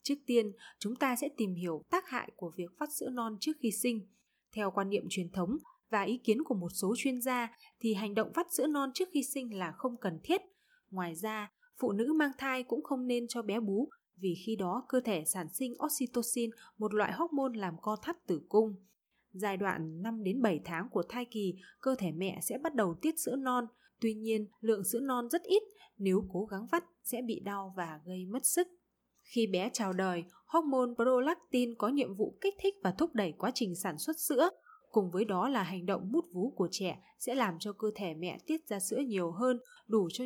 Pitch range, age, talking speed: 195-265 Hz, 20-39, 220 wpm